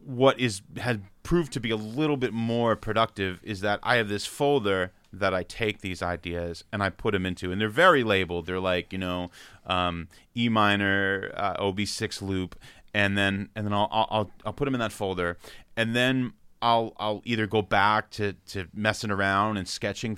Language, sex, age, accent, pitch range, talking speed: English, male, 30-49, American, 95-110 Hz, 200 wpm